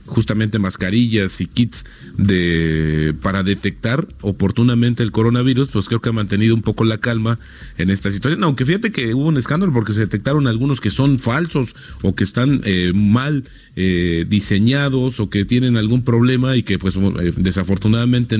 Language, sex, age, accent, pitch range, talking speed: Spanish, male, 40-59, Mexican, 105-130 Hz, 165 wpm